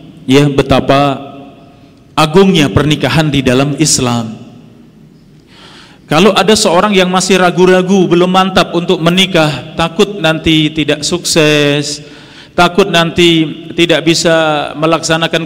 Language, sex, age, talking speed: Indonesian, male, 40-59, 100 wpm